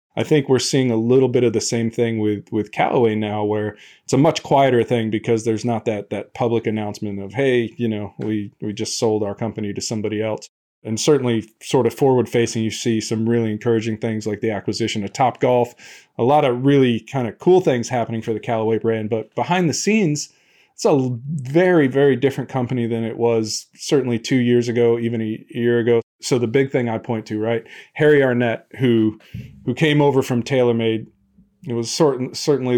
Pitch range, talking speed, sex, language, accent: 115-130 Hz, 205 wpm, male, English, American